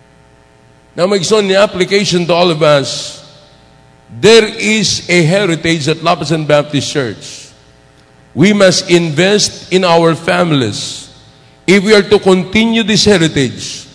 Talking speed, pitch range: 125 wpm, 150-205 Hz